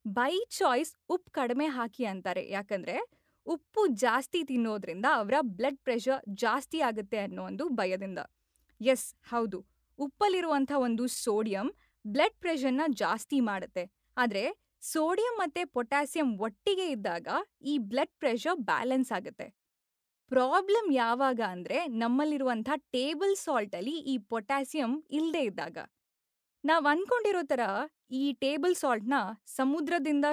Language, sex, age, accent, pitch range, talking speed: Kannada, female, 20-39, native, 220-295 Hz, 110 wpm